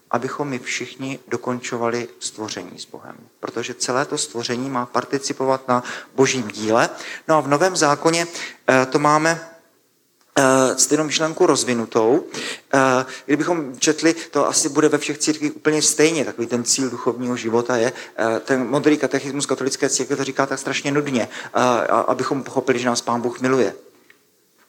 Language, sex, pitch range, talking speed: Czech, male, 120-145 Hz, 150 wpm